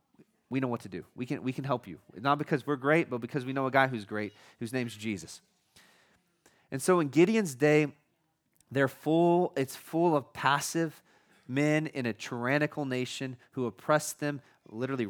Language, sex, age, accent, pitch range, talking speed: English, male, 30-49, American, 115-145 Hz, 185 wpm